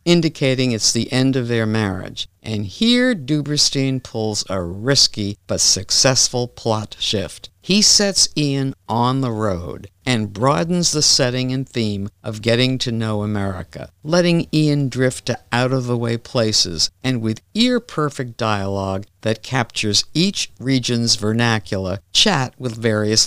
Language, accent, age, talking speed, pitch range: English, American, 60-79, 135 wpm, 100-135 Hz